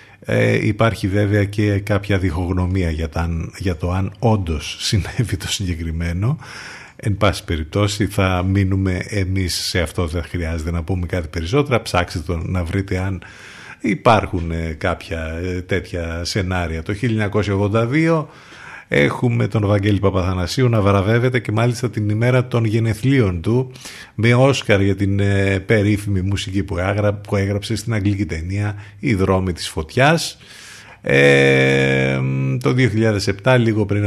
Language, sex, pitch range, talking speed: Greek, male, 95-110 Hz, 130 wpm